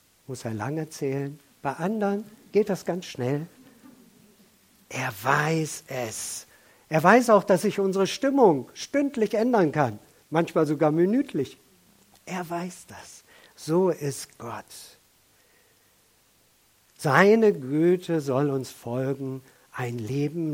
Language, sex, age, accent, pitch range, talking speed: German, male, 50-69, German, 130-170 Hz, 115 wpm